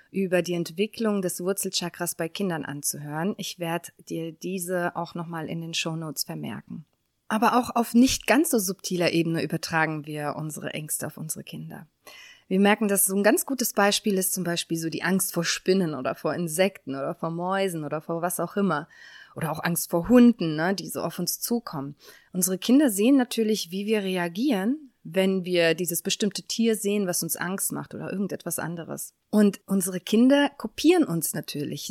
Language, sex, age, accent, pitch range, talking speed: German, female, 20-39, German, 170-220 Hz, 180 wpm